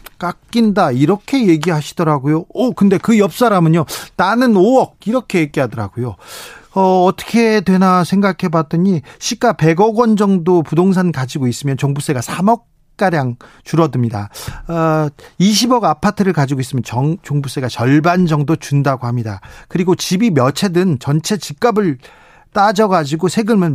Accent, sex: native, male